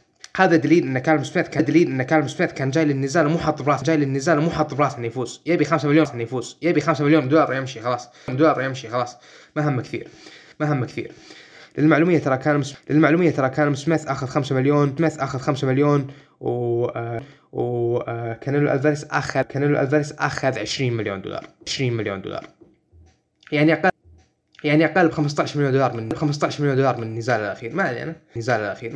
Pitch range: 120-150 Hz